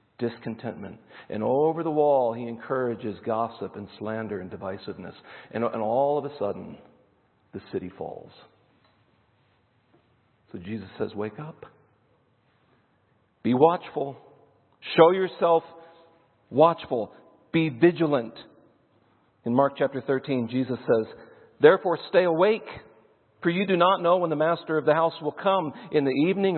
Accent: American